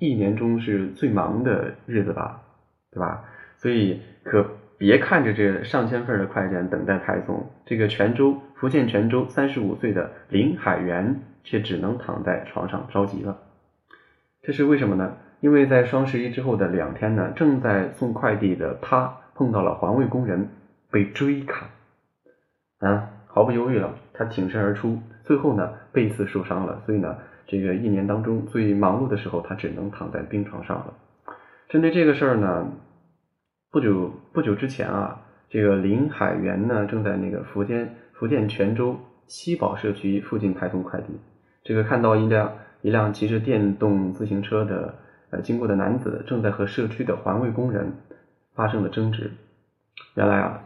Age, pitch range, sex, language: 20-39, 100-125 Hz, male, Chinese